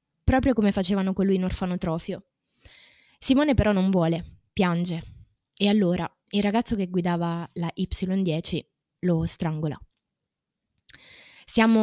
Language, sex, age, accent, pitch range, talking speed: Italian, female, 20-39, native, 170-205 Hz, 115 wpm